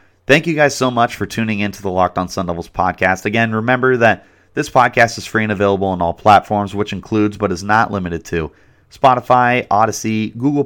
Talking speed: 210 wpm